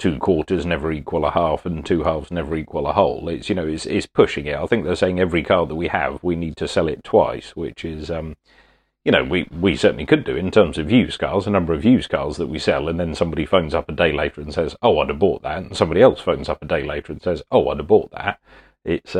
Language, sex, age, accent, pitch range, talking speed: English, male, 40-59, British, 80-95 Hz, 280 wpm